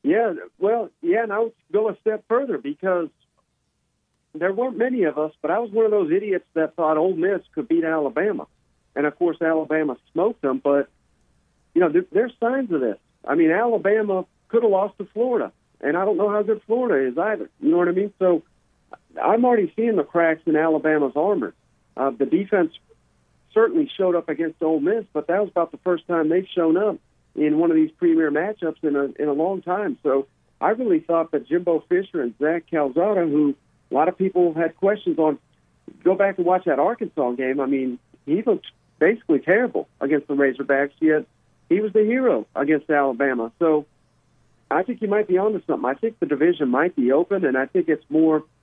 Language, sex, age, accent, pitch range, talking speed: English, male, 50-69, American, 150-215 Hz, 205 wpm